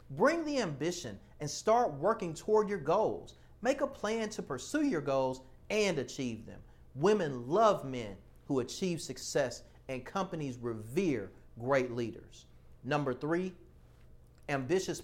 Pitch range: 135-205 Hz